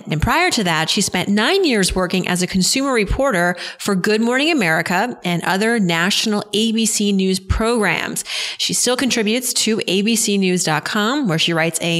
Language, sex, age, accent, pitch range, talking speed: English, female, 30-49, American, 175-230 Hz, 160 wpm